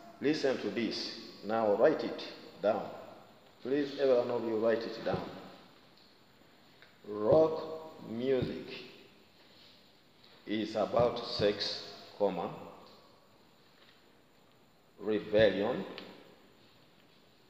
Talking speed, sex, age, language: 70 wpm, male, 50-69, English